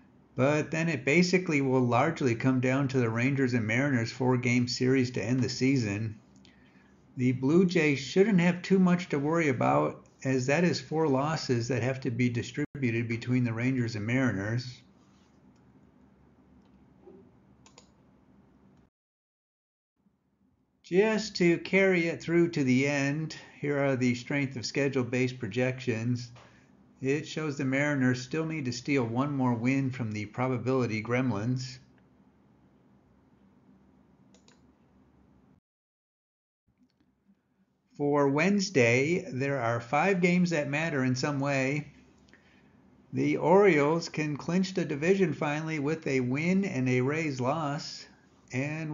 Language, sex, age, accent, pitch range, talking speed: English, male, 50-69, American, 115-150 Hz, 125 wpm